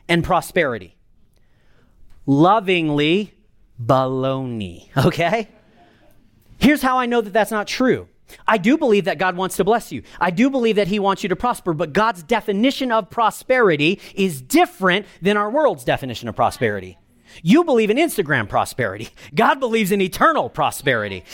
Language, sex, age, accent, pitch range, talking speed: English, male, 40-59, American, 145-230 Hz, 150 wpm